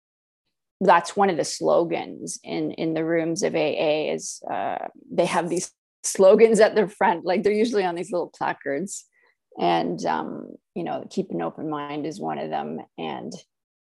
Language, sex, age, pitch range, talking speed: English, female, 30-49, 170-205 Hz, 170 wpm